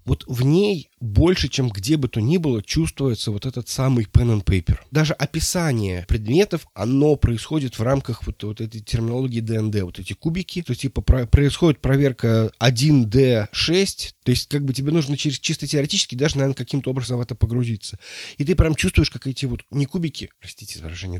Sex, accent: male, native